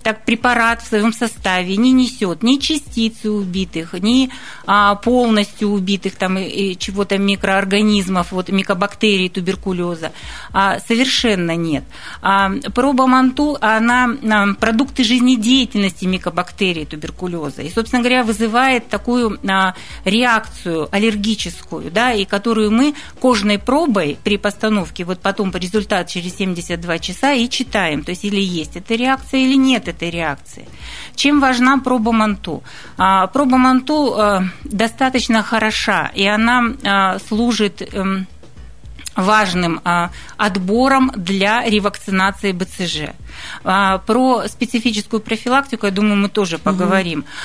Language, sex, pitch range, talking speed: Russian, female, 190-240 Hz, 120 wpm